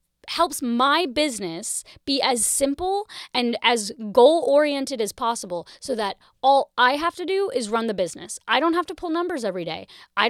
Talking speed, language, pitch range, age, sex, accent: 185 wpm, English, 250-340 Hz, 20-39, female, American